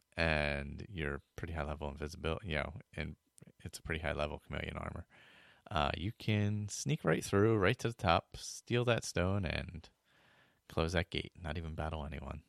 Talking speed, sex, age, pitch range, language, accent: 170 wpm, male, 30-49, 75-95 Hz, English, American